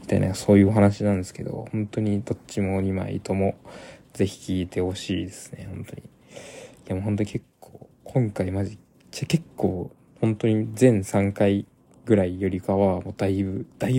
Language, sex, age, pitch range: Japanese, male, 20-39, 95-115 Hz